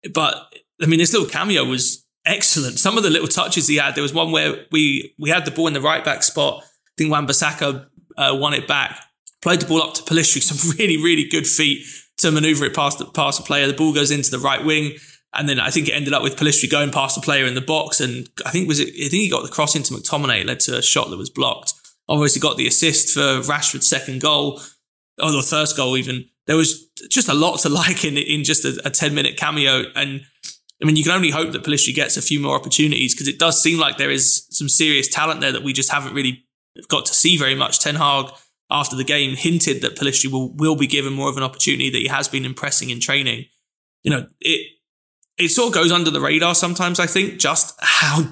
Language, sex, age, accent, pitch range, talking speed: English, male, 20-39, British, 140-160 Hz, 245 wpm